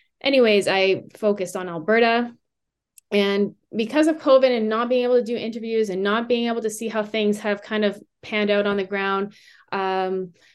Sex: female